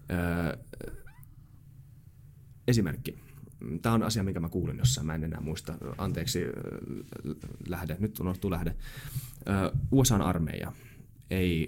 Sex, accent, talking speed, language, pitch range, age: male, native, 115 wpm, Finnish, 85-120 Hz, 30-49